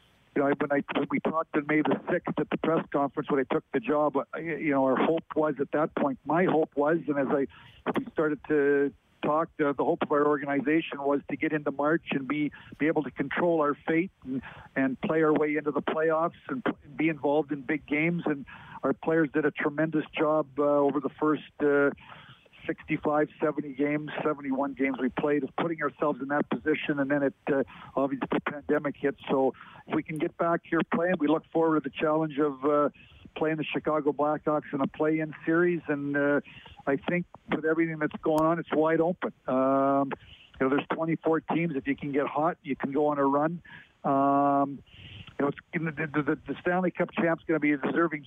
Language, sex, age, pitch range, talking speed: English, male, 50-69, 140-160 Hz, 215 wpm